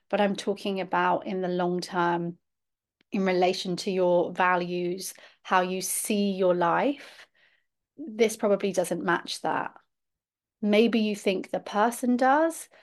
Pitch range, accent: 185-225 Hz, British